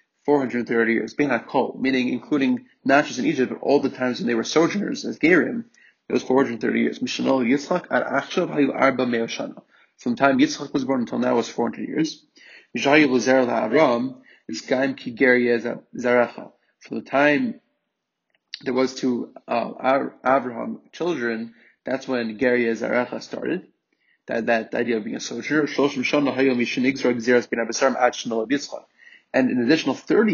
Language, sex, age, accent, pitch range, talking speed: English, male, 30-49, Canadian, 120-150 Hz, 115 wpm